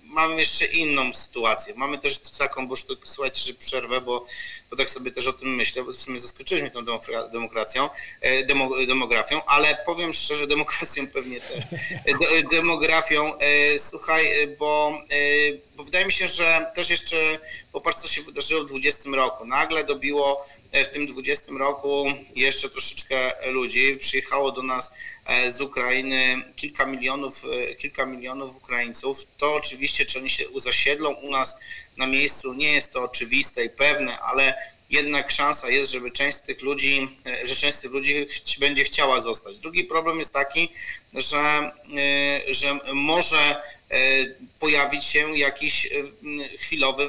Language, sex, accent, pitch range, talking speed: Polish, male, native, 130-150 Hz, 145 wpm